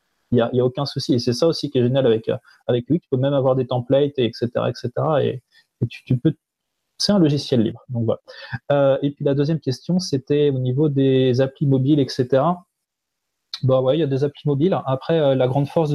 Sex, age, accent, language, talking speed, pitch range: male, 30-49, French, French, 235 wpm, 125-145 Hz